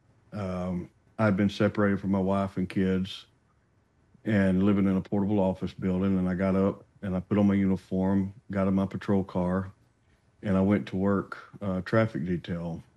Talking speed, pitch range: 180 wpm, 95-110 Hz